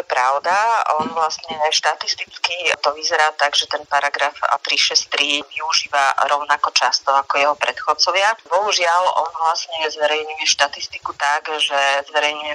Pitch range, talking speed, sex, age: 135-150 Hz, 120 wpm, female, 30-49